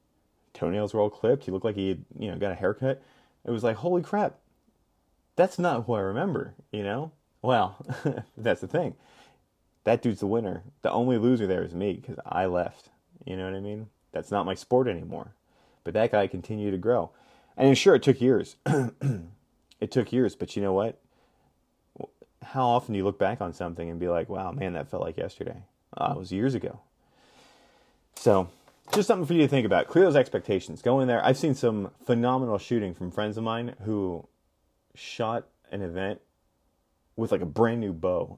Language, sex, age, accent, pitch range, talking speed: English, male, 30-49, American, 95-125 Hz, 195 wpm